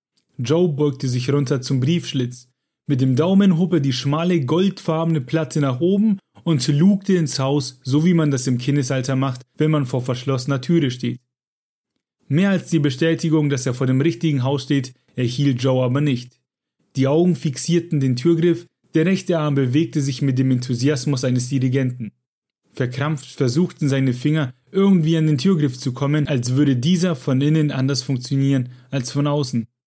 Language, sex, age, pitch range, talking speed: German, male, 30-49, 130-160 Hz, 170 wpm